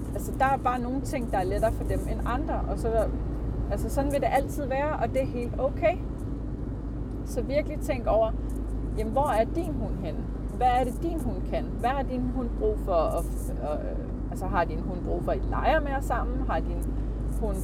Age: 30-49